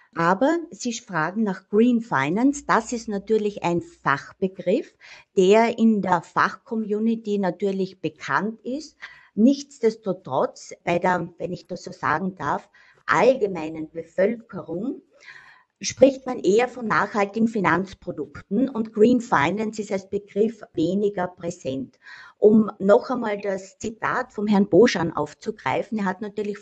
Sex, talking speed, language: female, 125 wpm, German